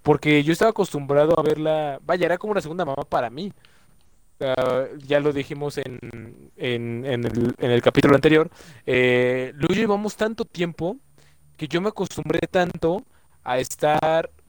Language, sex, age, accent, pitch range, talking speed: Spanish, male, 20-39, Mexican, 135-170 Hz, 155 wpm